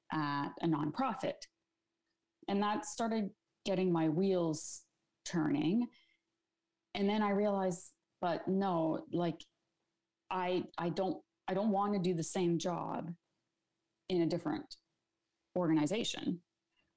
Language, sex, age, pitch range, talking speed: English, female, 40-59, 155-185 Hz, 115 wpm